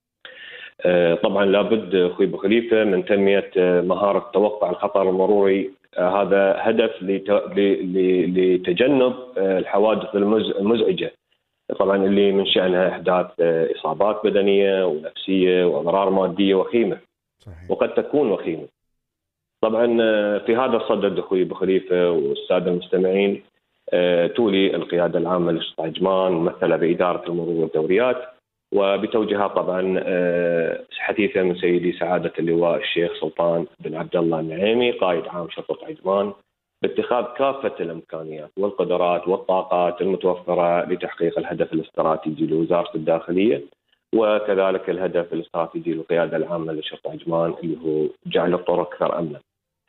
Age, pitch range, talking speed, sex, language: 30-49, 85-100 Hz, 105 wpm, male, Arabic